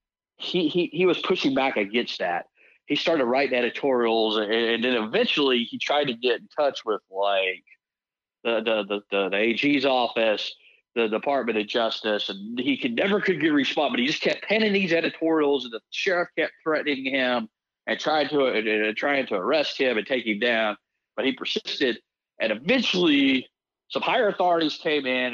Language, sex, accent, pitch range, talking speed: English, male, American, 120-175 Hz, 190 wpm